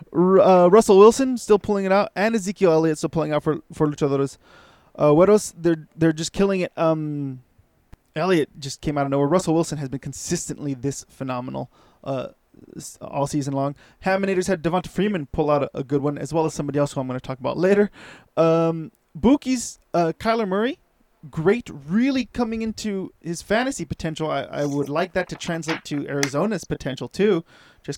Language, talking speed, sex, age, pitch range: English, 190 wpm, male, 20-39, 145-185 Hz